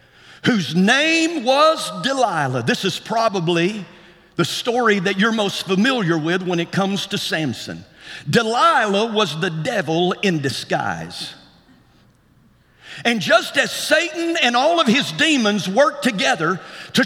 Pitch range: 210-310 Hz